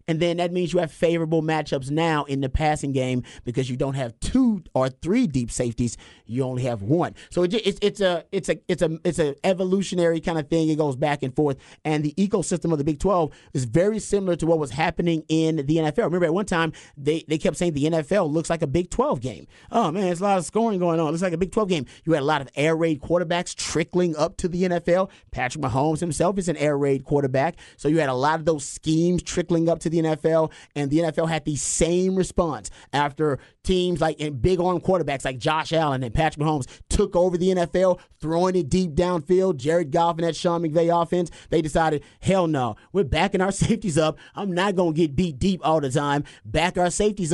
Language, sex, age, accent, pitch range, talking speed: English, male, 30-49, American, 150-180 Hz, 235 wpm